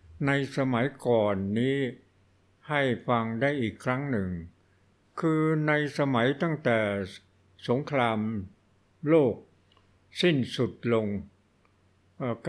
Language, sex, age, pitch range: Thai, male, 60-79, 115-150 Hz